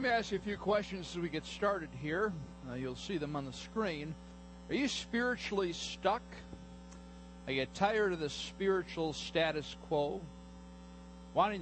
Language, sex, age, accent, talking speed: English, male, 50-69, American, 165 wpm